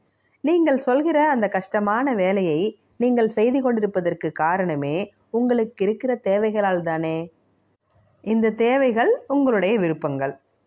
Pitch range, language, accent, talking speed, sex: 160-240 Hz, Tamil, native, 90 wpm, female